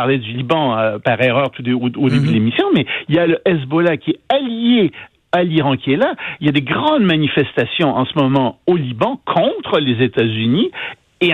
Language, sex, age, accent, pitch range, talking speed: French, male, 60-79, French, 135-195 Hz, 215 wpm